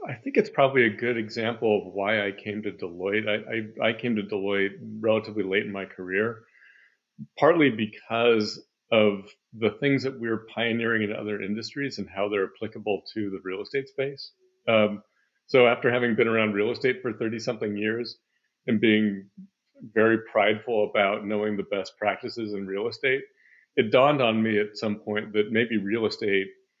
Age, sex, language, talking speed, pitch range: 40-59, male, English, 175 wpm, 105-120 Hz